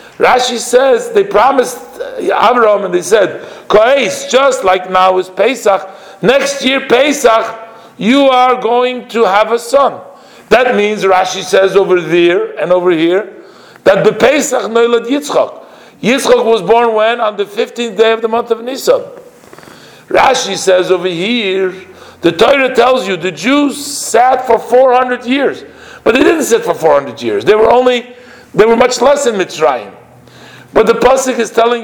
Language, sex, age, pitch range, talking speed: English, male, 50-69, 210-255 Hz, 160 wpm